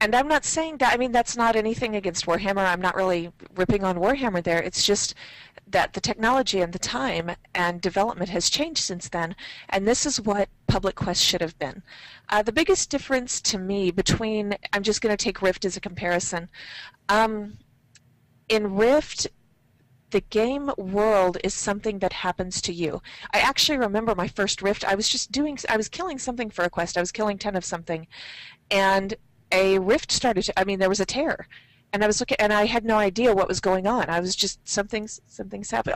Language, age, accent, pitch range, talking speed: English, 40-59, American, 185-235 Hz, 205 wpm